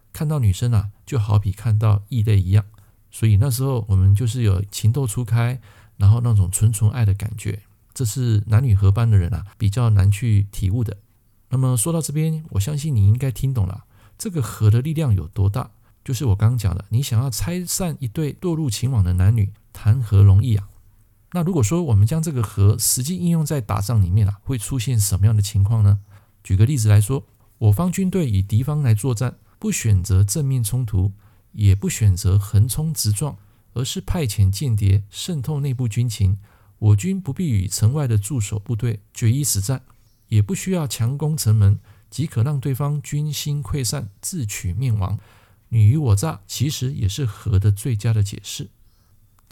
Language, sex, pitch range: Chinese, male, 100-130 Hz